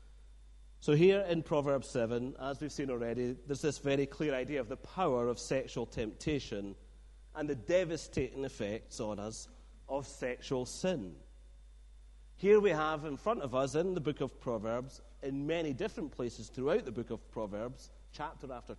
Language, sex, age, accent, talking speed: English, male, 40-59, British, 165 wpm